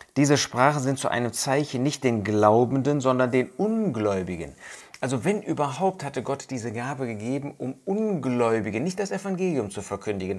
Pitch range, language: 100-135 Hz, German